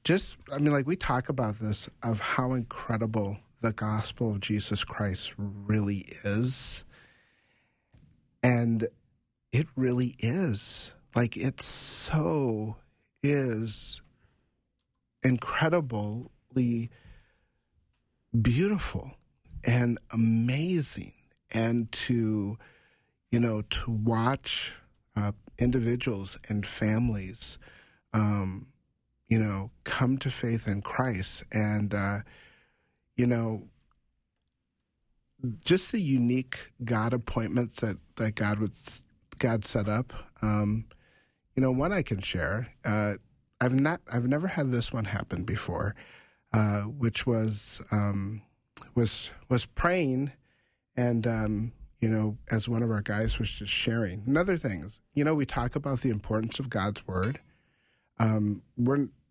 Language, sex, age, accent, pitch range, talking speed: English, male, 40-59, American, 105-130 Hz, 115 wpm